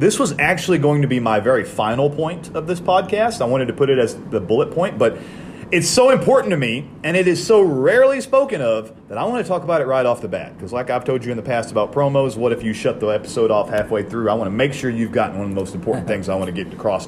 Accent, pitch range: American, 110-175 Hz